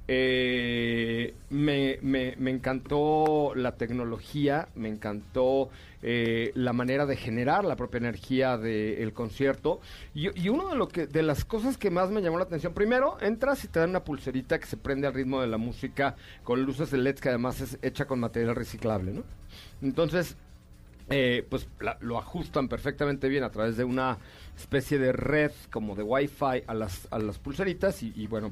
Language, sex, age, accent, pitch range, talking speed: Spanish, male, 40-59, Mexican, 120-160 Hz, 185 wpm